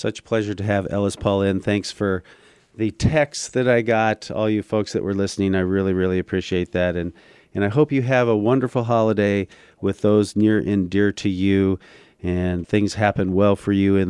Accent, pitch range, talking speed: American, 95-120 Hz, 210 wpm